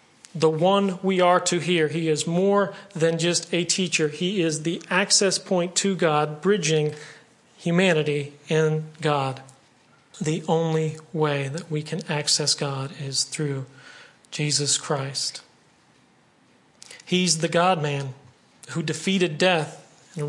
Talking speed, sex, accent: 125 wpm, male, American